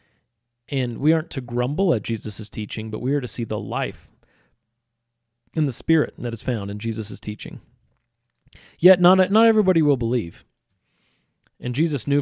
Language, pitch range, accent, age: English, 115-140 Hz, American, 30-49